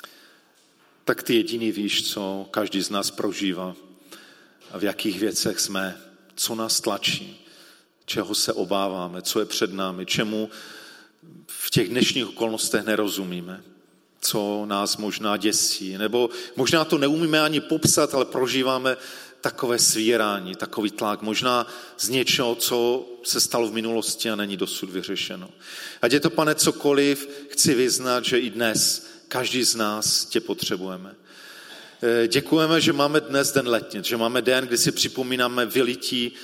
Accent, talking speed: native, 140 wpm